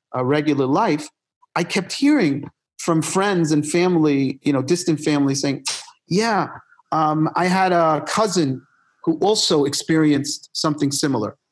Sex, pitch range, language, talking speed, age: male, 155-205 Hz, English, 135 wpm, 40-59